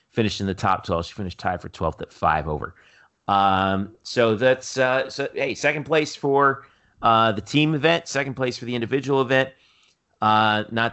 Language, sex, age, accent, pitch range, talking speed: English, male, 40-59, American, 110-135 Hz, 185 wpm